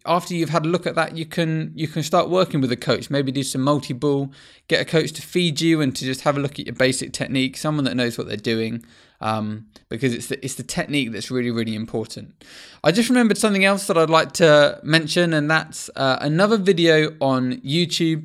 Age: 20-39